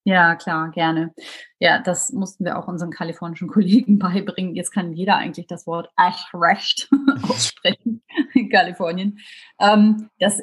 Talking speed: 140 wpm